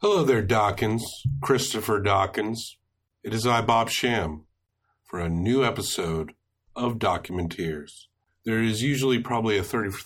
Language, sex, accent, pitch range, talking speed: English, male, American, 90-115 Hz, 135 wpm